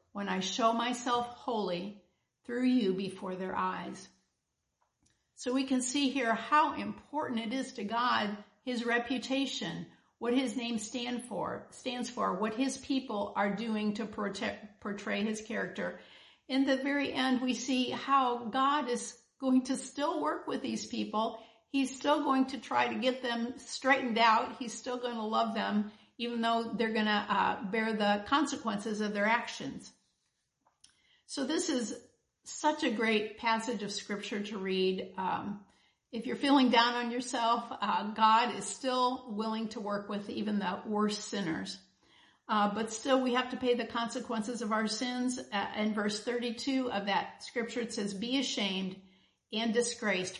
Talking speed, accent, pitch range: 165 wpm, American, 210-255 Hz